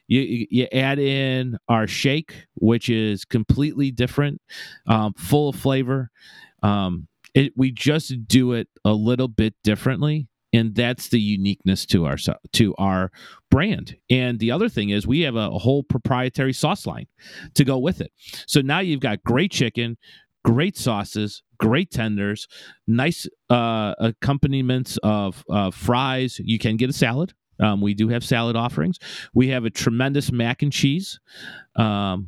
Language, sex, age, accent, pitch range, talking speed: English, male, 40-59, American, 115-140 Hz, 160 wpm